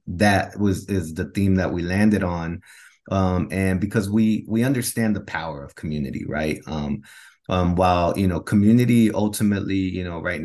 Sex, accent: male, American